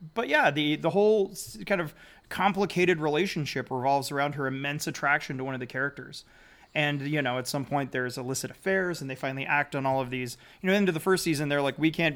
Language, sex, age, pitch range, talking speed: English, male, 30-49, 140-185 Hz, 225 wpm